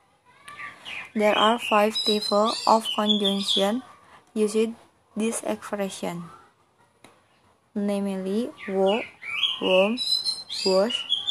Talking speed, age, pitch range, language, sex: 70 wpm, 20-39, 190-225 Hz, Indonesian, female